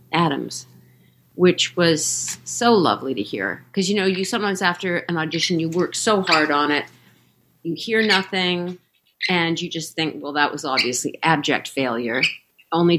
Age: 50-69